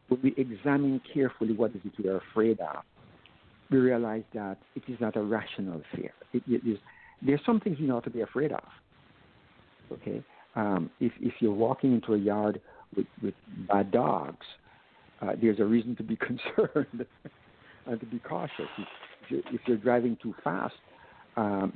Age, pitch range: 60-79, 110-135 Hz